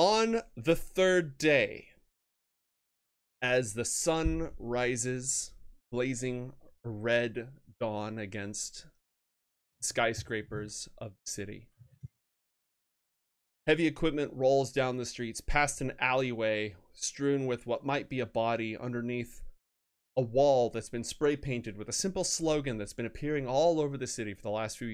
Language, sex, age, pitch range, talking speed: English, male, 30-49, 110-135 Hz, 130 wpm